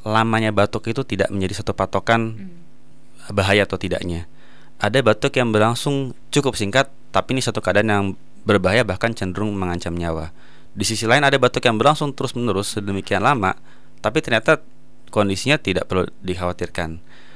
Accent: native